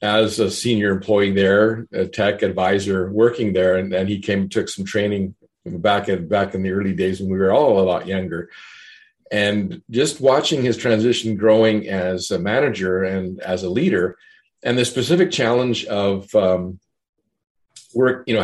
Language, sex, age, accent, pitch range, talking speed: English, male, 40-59, American, 95-110 Hz, 175 wpm